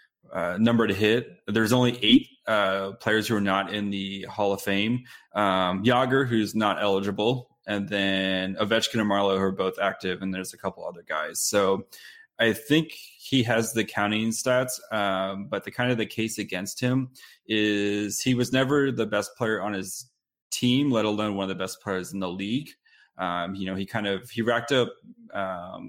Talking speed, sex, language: 190 wpm, male, English